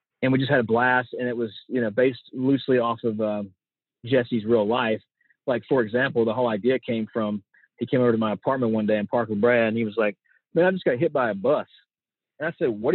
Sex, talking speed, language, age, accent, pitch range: male, 260 wpm, English, 30-49, American, 110-135 Hz